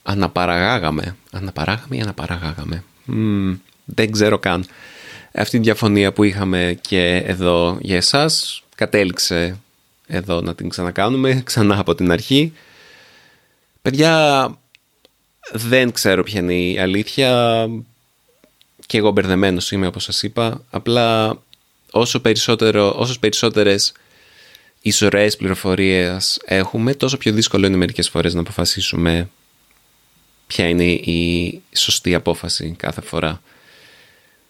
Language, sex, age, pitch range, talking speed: Greek, male, 30-49, 90-125 Hz, 110 wpm